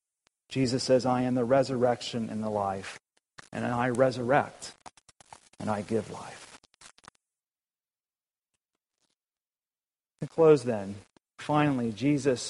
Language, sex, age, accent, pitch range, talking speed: English, male, 40-59, American, 115-140 Hz, 100 wpm